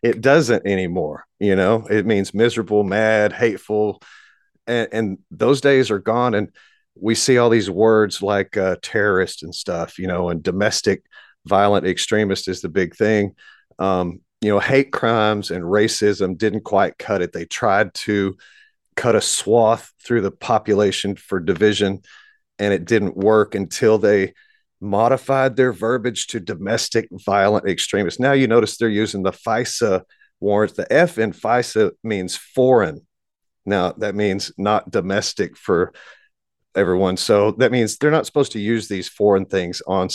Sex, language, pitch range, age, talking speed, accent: male, English, 100-115 Hz, 40-59, 155 wpm, American